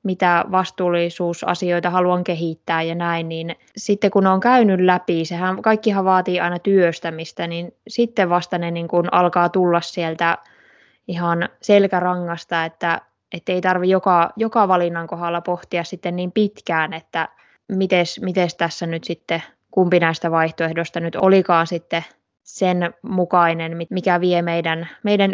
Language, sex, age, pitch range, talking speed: Finnish, female, 20-39, 170-195 Hz, 135 wpm